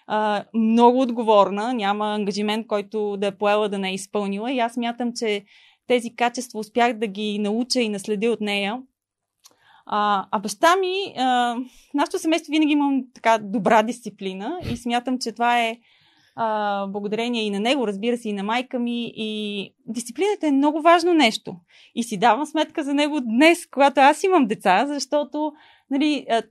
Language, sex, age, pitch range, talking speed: Bulgarian, female, 20-39, 220-290 Hz, 170 wpm